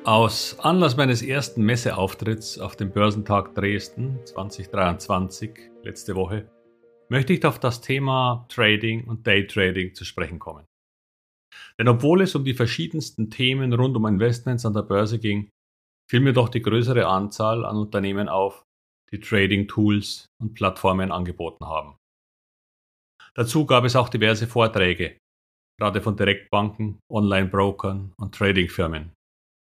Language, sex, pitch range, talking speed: German, male, 95-120 Hz, 130 wpm